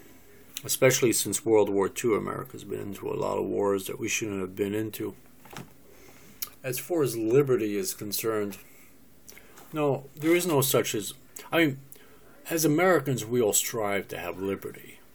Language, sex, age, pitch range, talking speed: English, male, 50-69, 105-140 Hz, 160 wpm